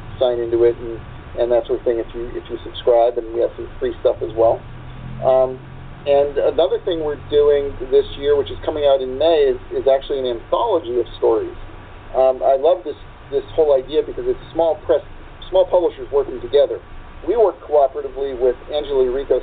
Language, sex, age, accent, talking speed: English, male, 40-59, American, 200 wpm